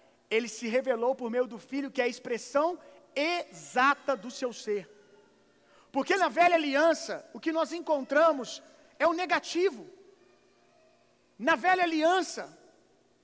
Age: 40-59